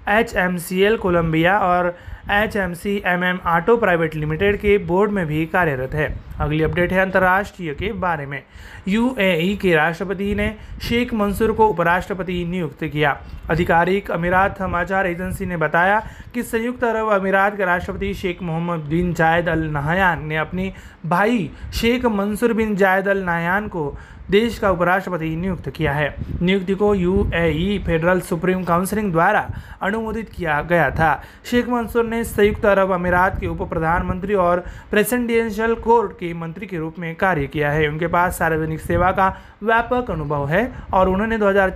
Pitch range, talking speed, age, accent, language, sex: 170-205 Hz, 165 wpm, 30-49, native, Marathi, male